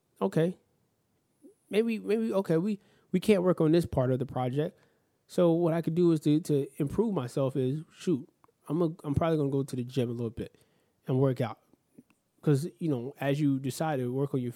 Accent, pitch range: American, 125-155 Hz